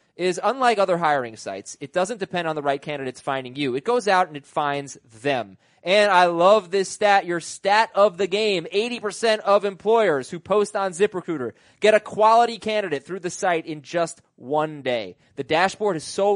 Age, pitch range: 20-39, 145-205 Hz